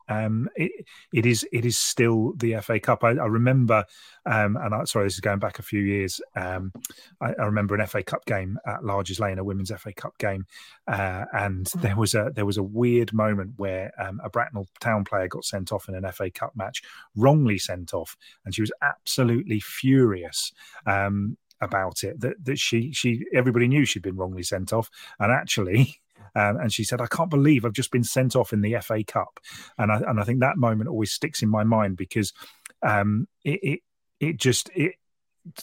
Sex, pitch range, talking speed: male, 100-120 Hz, 205 wpm